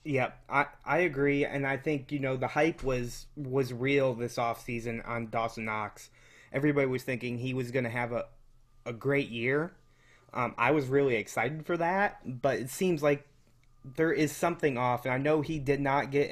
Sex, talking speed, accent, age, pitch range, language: male, 200 wpm, American, 20-39, 120-140 Hz, English